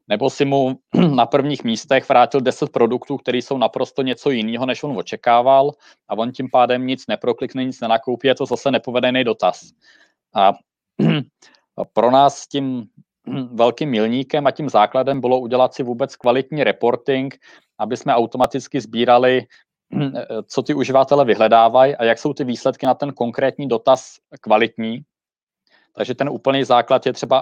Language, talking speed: Czech, 150 wpm